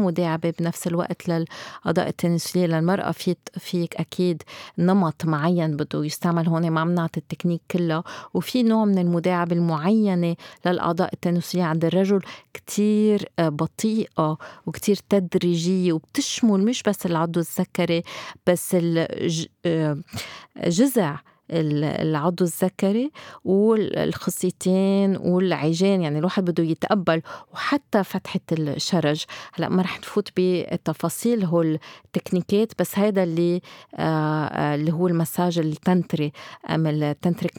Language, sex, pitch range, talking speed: Arabic, female, 170-200 Hz, 100 wpm